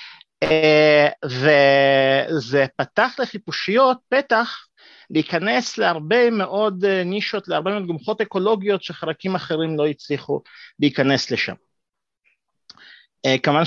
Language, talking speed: Hebrew, 90 wpm